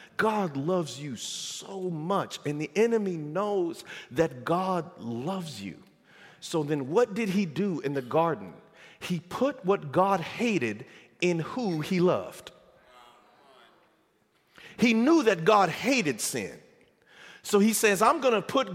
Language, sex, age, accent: English, male, 40-59, American